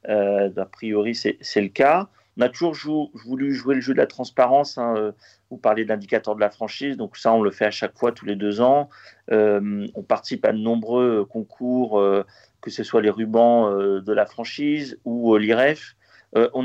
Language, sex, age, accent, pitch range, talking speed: French, male, 40-59, French, 105-140 Hz, 225 wpm